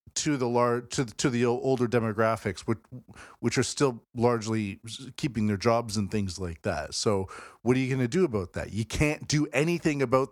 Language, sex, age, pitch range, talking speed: English, male, 40-59, 110-130 Hz, 200 wpm